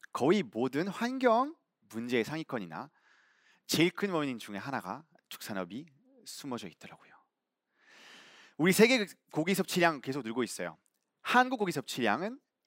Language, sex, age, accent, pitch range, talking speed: English, male, 30-49, Korean, 130-215 Hz, 110 wpm